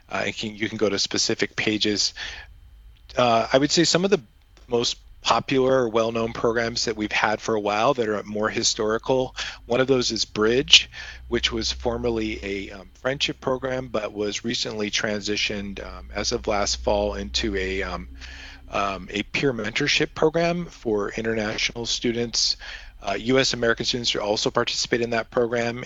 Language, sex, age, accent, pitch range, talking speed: English, male, 40-59, American, 100-120 Hz, 165 wpm